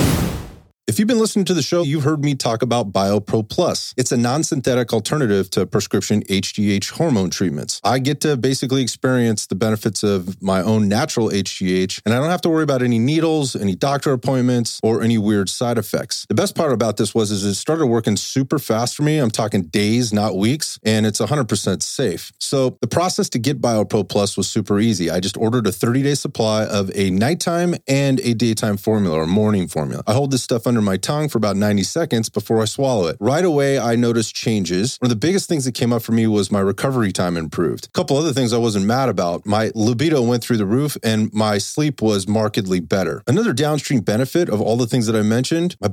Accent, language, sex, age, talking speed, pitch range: American, English, male, 30-49, 220 wpm, 105-135 Hz